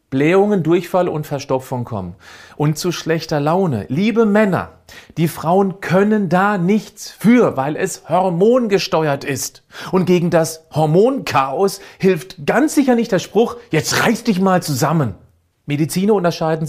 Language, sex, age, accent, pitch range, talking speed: German, male, 40-59, German, 125-175 Hz, 135 wpm